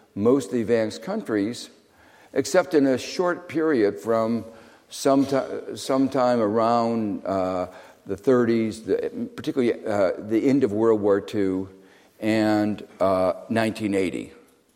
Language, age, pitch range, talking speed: English, 60-79, 95-120 Hz, 100 wpm